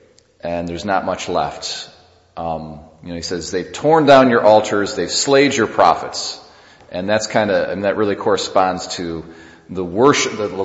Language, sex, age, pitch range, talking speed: English, male, 40-59, 85-110 Hz, 170 wpm